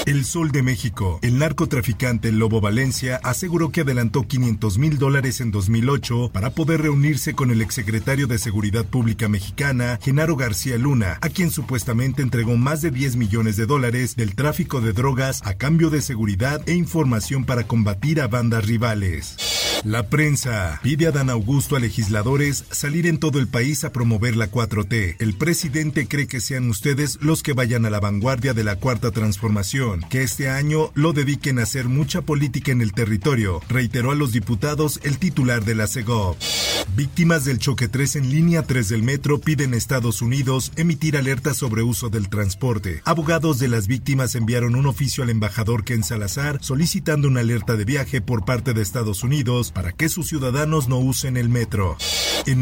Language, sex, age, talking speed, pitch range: Spanish, male, 50-69, 180 wpm, 115-145 Hz